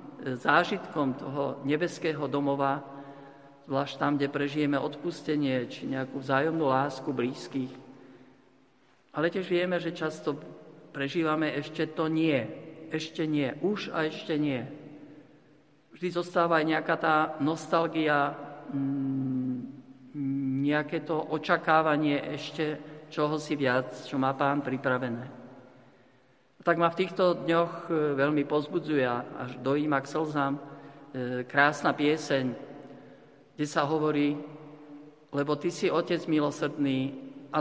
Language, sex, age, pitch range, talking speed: Slovak, male, 50-69, 135-155 Hz, 110 wpm